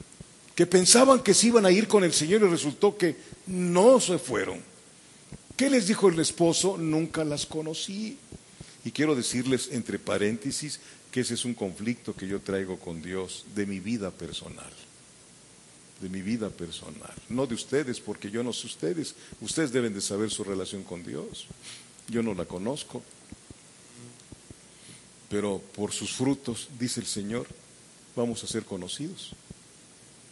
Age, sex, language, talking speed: 50-69, male, English, 150 wpm